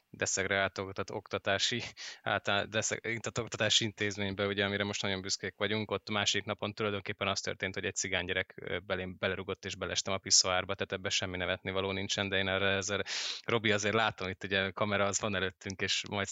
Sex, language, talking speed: male, Hungarian, 185 wpm